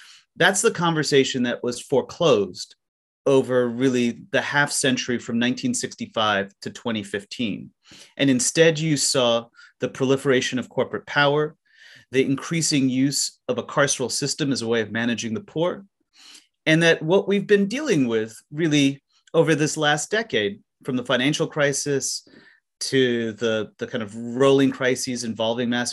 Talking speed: 145 wpm